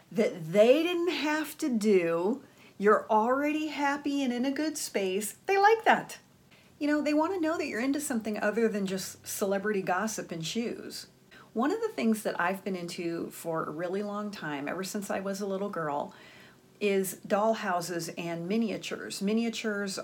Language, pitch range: English, 175-225 Hz